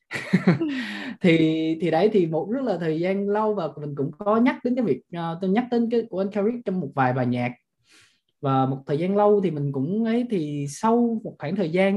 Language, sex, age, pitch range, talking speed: Vietnamese, male, 20-39, 135-195 Hz, 230 wpm